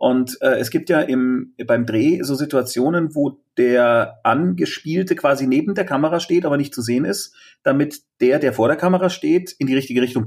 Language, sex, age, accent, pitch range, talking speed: German, male, 30-49, German, 120-175 Hz, 200 wpm